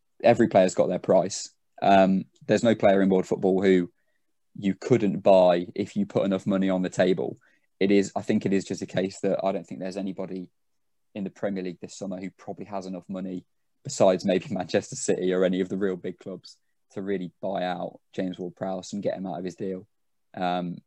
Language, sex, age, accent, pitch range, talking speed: English, male, 20-39, British, 95-100 Hz, 215 wpm